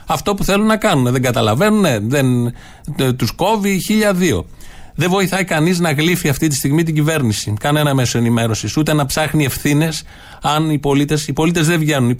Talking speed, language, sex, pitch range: 175 wpm, Greek, male, 130-175 Hz